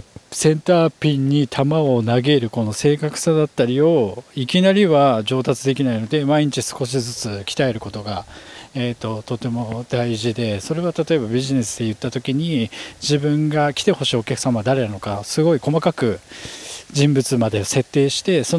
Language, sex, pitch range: Japanese, male, 120-155 Hz